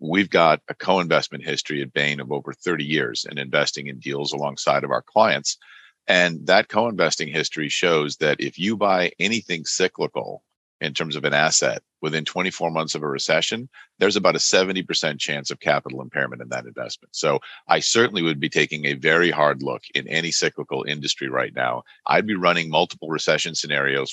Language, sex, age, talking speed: English, male, 40-59, 185 wpm